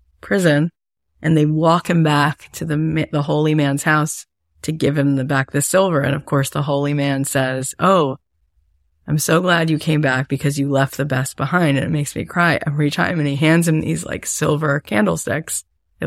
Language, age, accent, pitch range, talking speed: English, 30-49, American, 115-160 Hz, 205 wpm